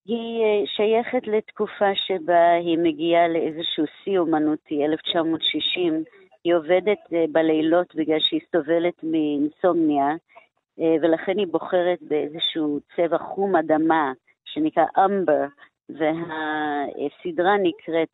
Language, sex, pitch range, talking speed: Hebrew, female, 160-190 Hz, 95 wpm